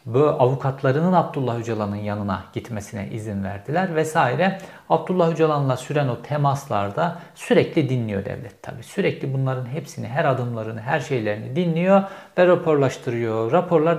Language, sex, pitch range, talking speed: Turkish, male, 120-155 Hz, 125 wpm